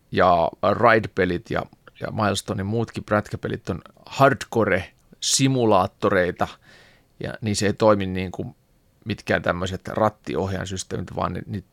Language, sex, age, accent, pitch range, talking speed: Finnish, male, 30-49, native, 95-120 Hz, 120 wpm